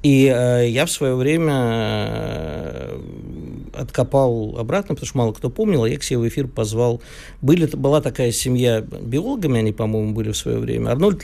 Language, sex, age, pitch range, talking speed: Russian, male, 50-69, 115-150 Hz, 165 wpm